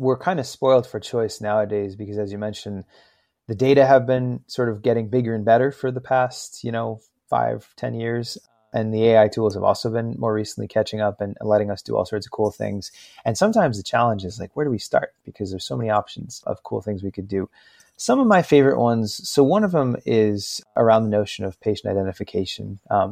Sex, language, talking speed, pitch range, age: male, English, 225 wpm, 100-125 Hz, 30-49